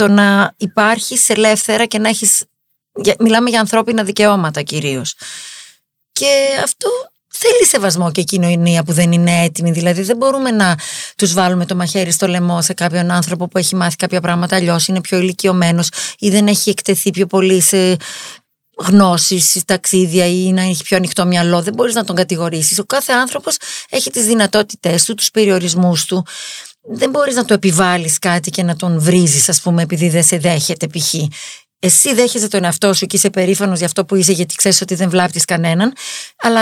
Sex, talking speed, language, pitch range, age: female, 185 wpm, Greek, 175-215 Hz, 30-49